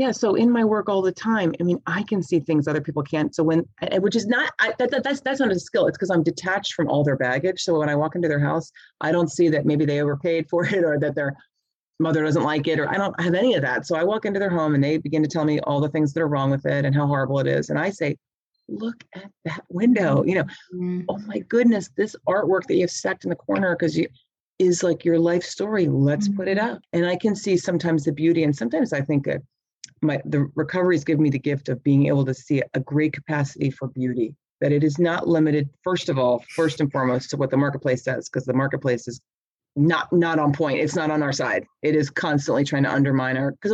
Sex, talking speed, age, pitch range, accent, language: female, 260 wpm, 30-49, 140-175 Hz, American, English